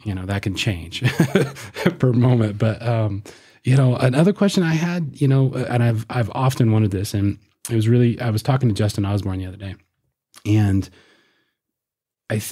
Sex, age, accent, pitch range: male, 20-39, American, 95-115 Hz